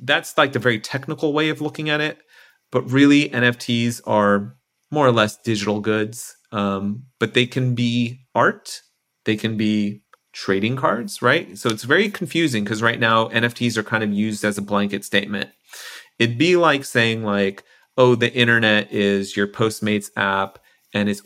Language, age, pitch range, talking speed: English, 30-49, 100-125 Hz, 170 wpm